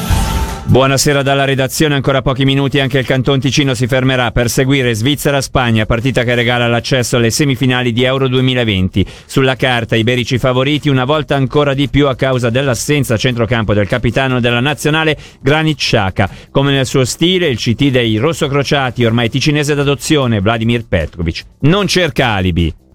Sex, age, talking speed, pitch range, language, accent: male, 50-69, 155 wpm, 110-130 Hz, Italian, native